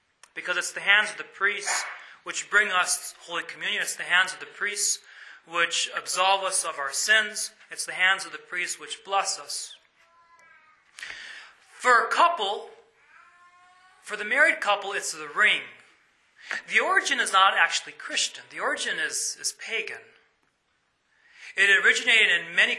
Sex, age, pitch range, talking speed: male, 30-49, 150-230 Hz, 155 wpm